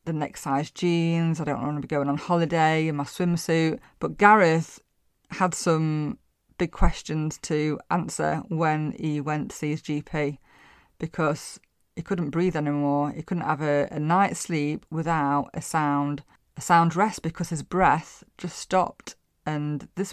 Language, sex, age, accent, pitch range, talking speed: English, female, 30-49, British, 150-175 Hz, 165 wpm